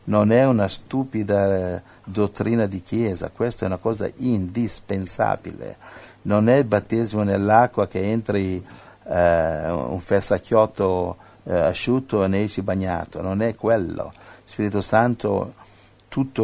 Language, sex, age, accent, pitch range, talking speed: Italian, male, 50-69, native, 95-115 Hz, 130 wpm